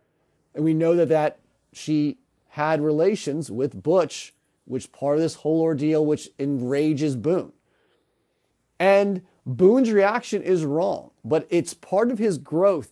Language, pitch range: English, 135-170 Hz